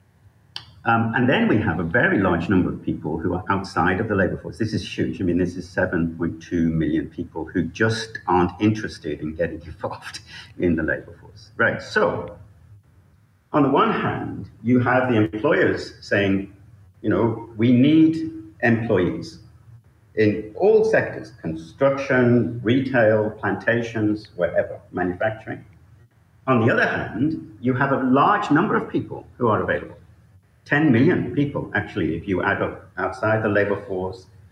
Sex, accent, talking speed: male, British, 155 wpm